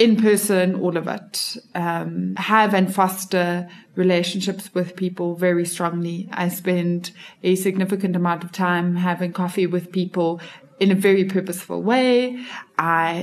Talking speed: 140 wpm